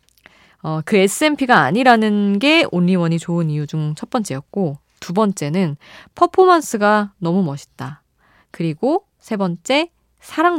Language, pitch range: Korean, 155-225 Hz